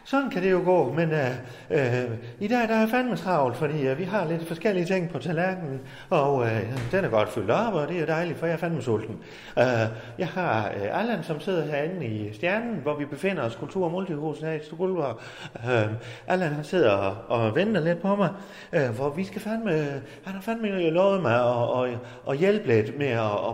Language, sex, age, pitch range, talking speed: Danish, male, 40-59, 120-180 Hz, 210 wpm